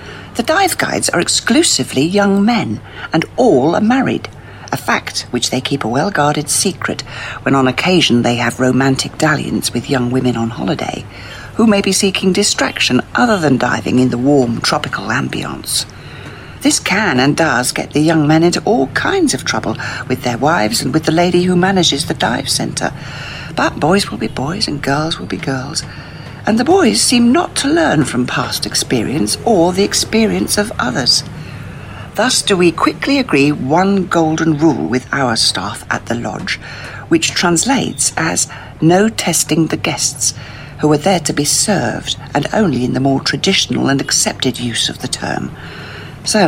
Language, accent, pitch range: English, British, 125-175 Hz